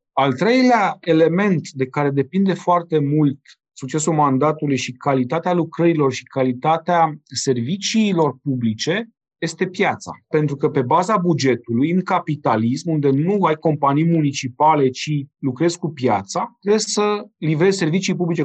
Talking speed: 130 wpm